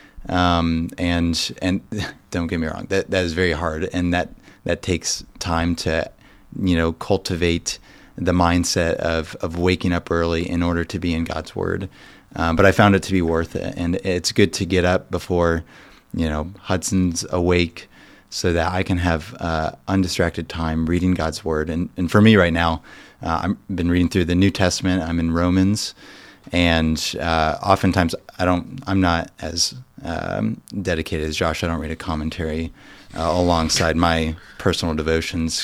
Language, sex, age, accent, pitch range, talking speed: English, male, 30-49, American, 80-95 Hz, 175 wpm